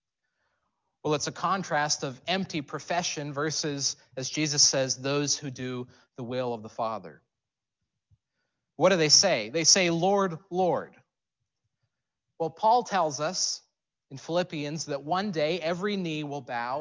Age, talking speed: 30-49, 145 wpm